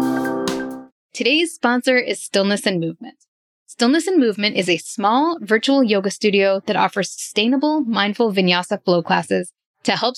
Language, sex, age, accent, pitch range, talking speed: English, female, 10-29, American, 210-275 Hz, 140 wpm